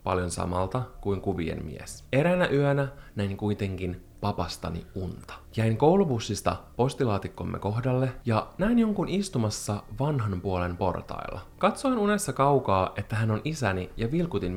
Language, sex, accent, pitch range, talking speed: Finnish, male, native, 95-140 Hz, 130 wpm